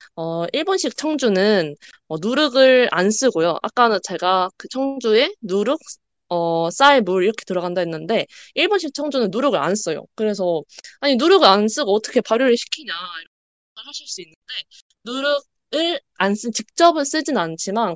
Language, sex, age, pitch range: Korean, female, 20-39, 180-265 Hz